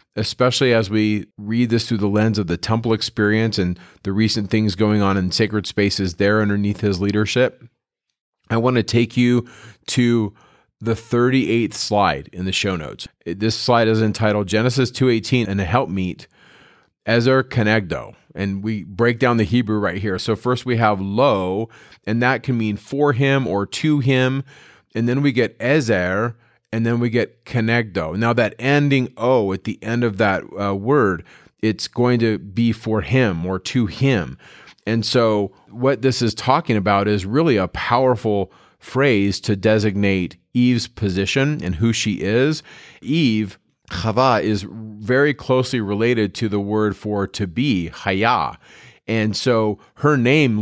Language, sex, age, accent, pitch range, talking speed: English, male, 30-49, American, 100-125 Hz, 165 wpm